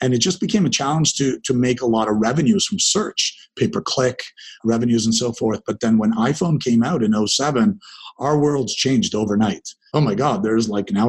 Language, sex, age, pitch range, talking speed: English, male, 40-59, 115-135 Hz, 205 wpm